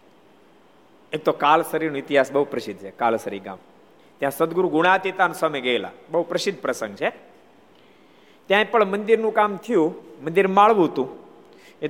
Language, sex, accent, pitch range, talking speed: Gujarati, male, native, 130-185 Hz, 125 wpm